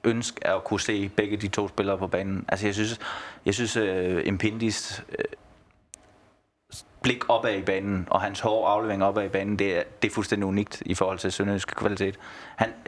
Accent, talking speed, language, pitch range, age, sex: native, 195 wpm, Danish, 100-120 Hz, 20-39, male